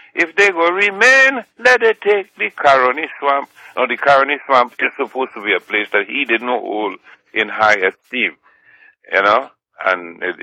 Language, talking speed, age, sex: English, 185 wpm, 60-79, male